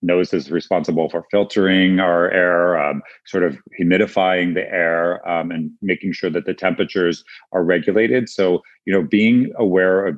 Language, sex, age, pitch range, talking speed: English, male, 40-59, 85-95 Hz, 165 wpm